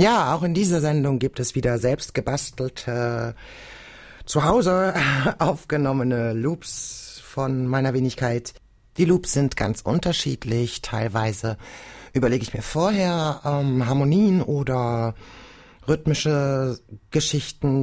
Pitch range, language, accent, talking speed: 115-155 Hz, German, German, 110 wpm